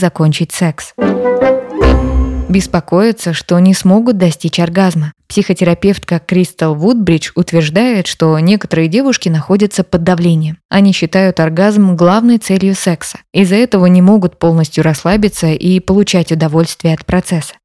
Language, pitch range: Russian, 165-205 Hz